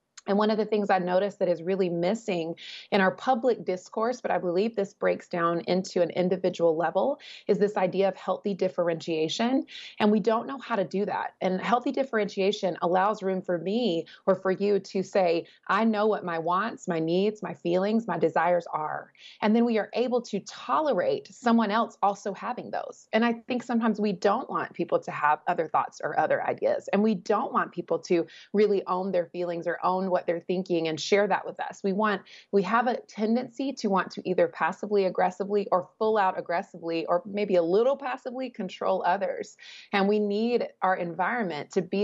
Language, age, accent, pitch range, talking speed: English, 30-49, American, 175-215 Hz, 200 wpm